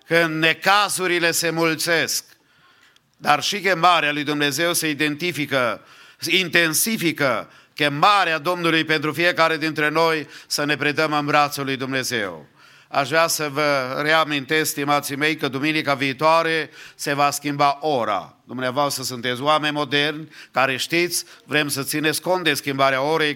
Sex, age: male, 50-69